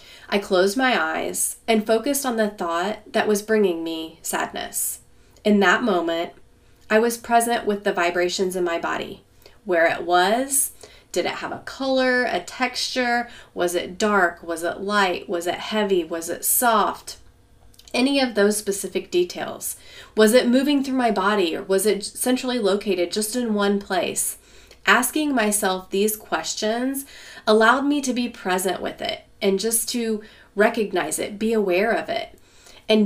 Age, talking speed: 30-49, 160 wpm